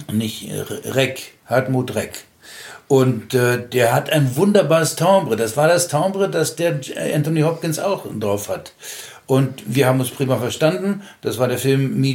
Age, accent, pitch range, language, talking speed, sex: 60-79, German, 110-140 Hz, German, 165 wpm, male